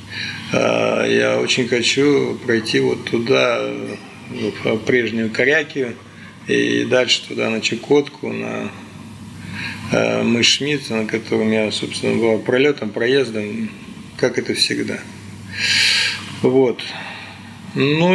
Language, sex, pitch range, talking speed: Russian, male, 110-135 Hz, 95 wpm